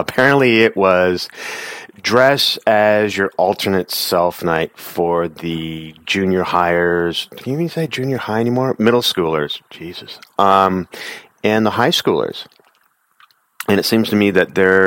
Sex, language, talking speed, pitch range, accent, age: male, English, 140 wpm, 90-125 Hz, American, 40-59